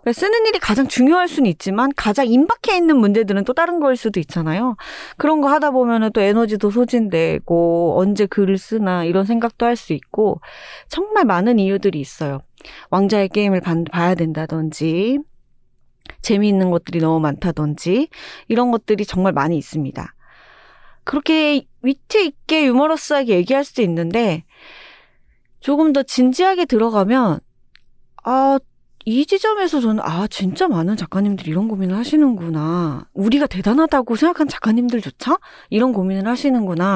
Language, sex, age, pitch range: Korean, female, 30-49, 175-275 Hz